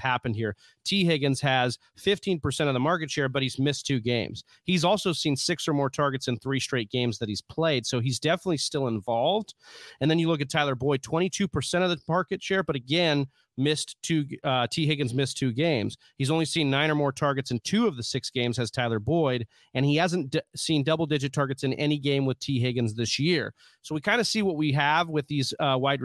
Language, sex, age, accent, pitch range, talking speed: English, male, 30-49, American, 120-150 Hz, 230 wpm